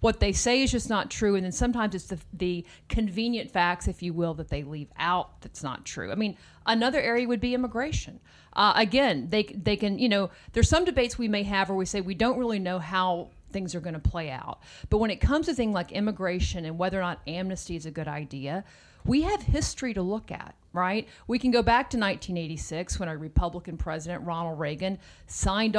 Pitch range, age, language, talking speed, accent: 175-220 Hz, 40-59, English, 225 wpm, American